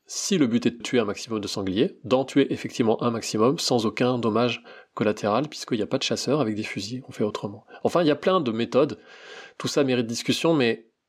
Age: 20-39